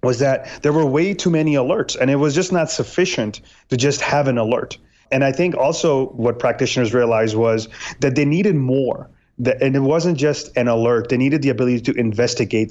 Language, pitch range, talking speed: English, 120-140 Hz, 205 wpm